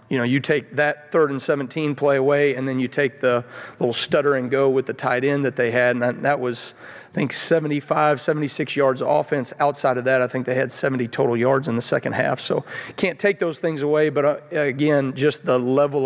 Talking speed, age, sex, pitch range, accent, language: 225 wpm, 40-59, male, 135-155 Hz, American, English